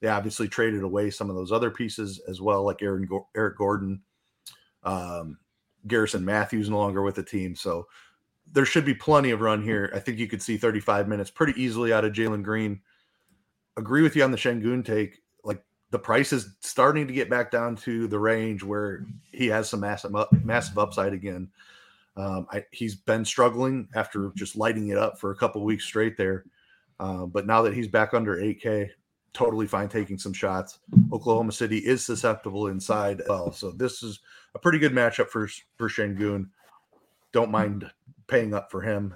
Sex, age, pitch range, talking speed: male, 30-49, 100-120 Hz, 195 wpm